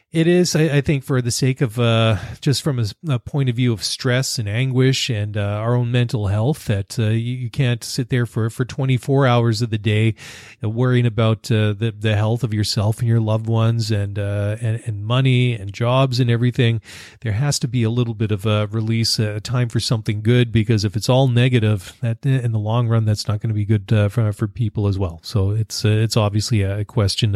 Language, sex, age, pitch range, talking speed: English, male, 30-49, 110-135 Hz, 235 wpm